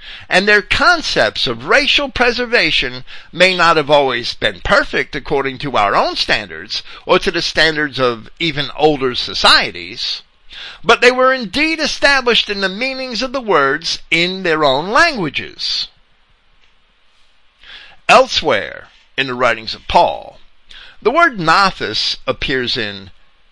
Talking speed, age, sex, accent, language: 130 wpm, 50-69, male, American, English